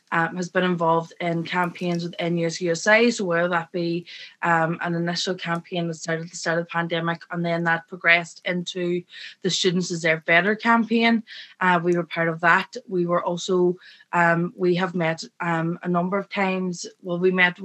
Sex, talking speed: female, 190 wpm